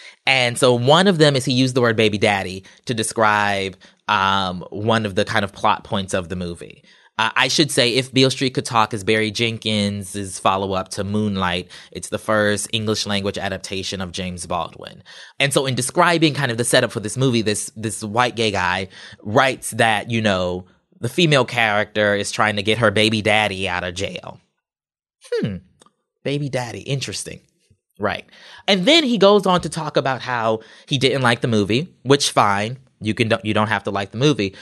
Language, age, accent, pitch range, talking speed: English, 20-39, American, 100-130 Hz, 195 wpm